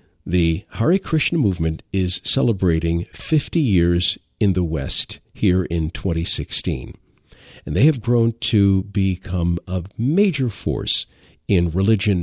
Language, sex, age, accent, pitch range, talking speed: English, male, 50-69, American, 90-120 Hz, 125 wpm